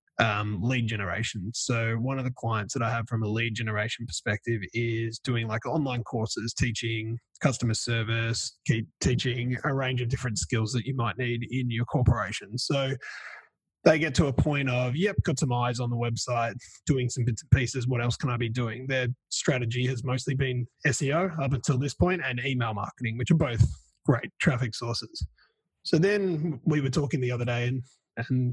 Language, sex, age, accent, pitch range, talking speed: English, male, 20-39, Australian, 115-135 Hz, 195 wpm